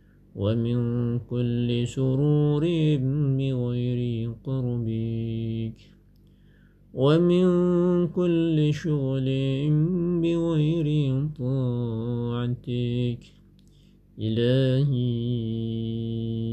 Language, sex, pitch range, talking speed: Indonesian, male, 120-150 Hz, 40 wpm